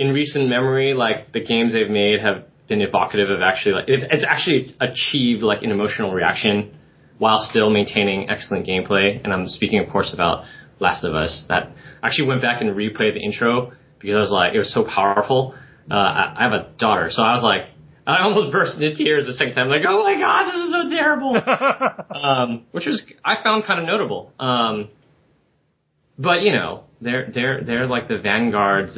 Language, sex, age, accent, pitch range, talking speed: English, male, 20-39, American, 100-135 Hz, 195 wpm